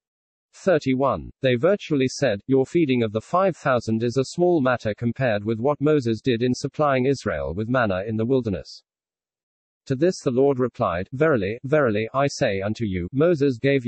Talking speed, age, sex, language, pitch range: 175 wpm, 40-59, male, English, 110-140 Hz